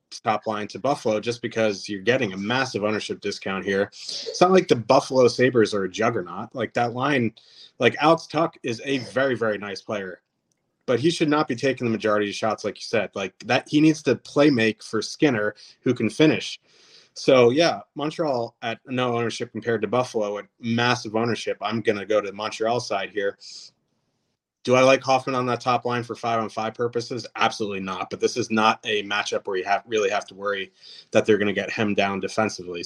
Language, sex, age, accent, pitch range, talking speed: English, male, 30-49, American, 110-135 Hz, 210 wpm